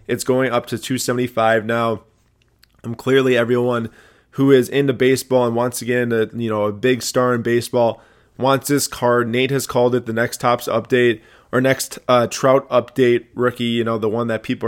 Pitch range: 115-130 Hz